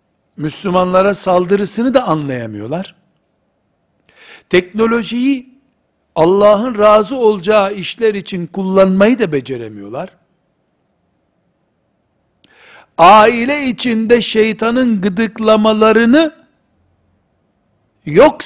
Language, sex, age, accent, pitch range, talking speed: Turkish, male, 60-79, native, 170-230 Hz, 60 wpm